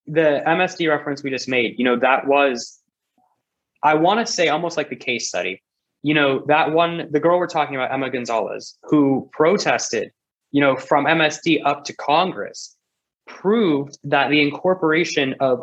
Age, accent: 20-39, American